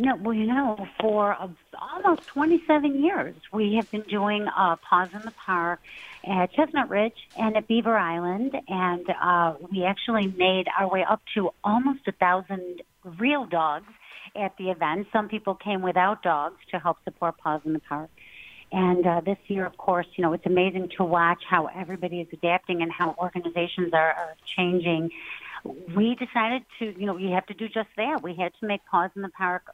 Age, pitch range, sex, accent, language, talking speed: 50-69, 175-210 Hz, female, American, English, 190 wpm